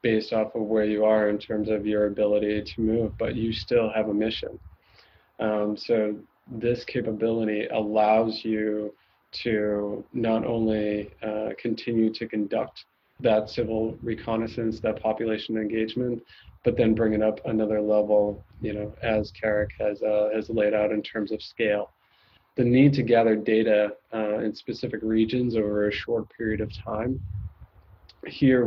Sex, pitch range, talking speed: male, 105-115 Hz, 155 wpm